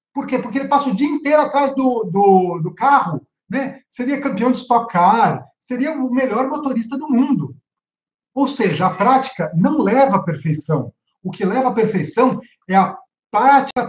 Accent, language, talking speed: Brazilian, Portuguese, 170 wpm